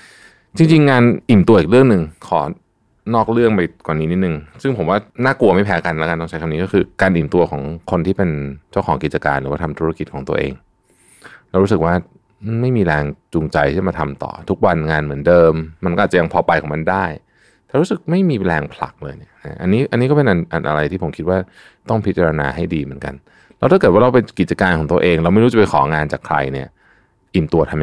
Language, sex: Thai, male